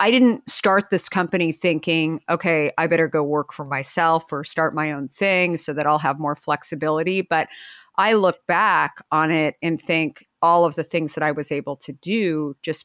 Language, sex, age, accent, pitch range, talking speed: English, female, 50-69, American, 150-185 Hz, 200 wpm